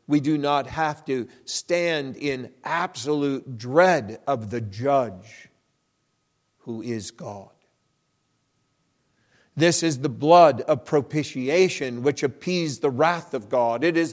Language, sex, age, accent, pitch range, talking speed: English, male, 50-69, American, 145-175 Hz, 125 wpm